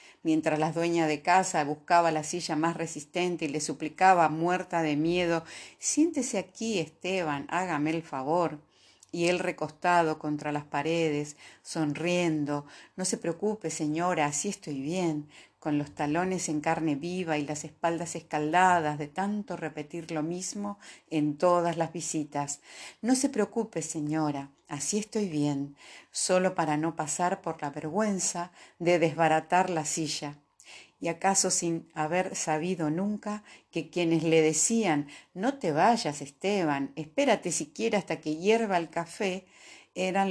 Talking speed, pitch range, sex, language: 140 wpm, 155-185 Hz, female, Spanish